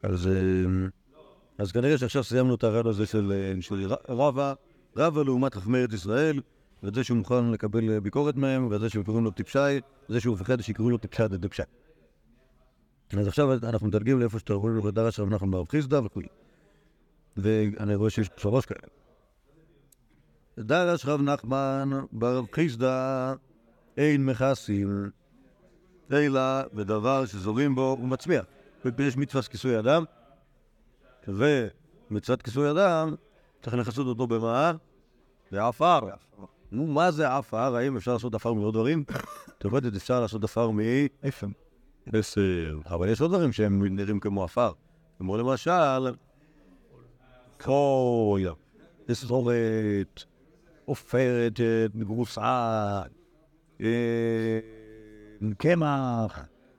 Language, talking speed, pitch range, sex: Hebrew, 115 wpm, 105-135 Hz, male